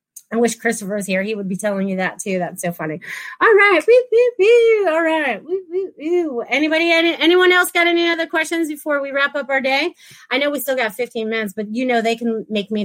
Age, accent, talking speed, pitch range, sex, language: 30-49, American, 215 wpm, 230-270 Hz, female, English